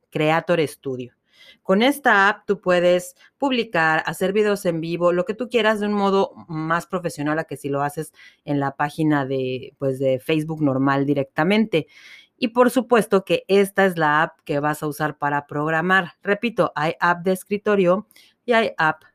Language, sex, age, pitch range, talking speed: Spanish, female, 30-49, 145-195 Hz, 175 wpm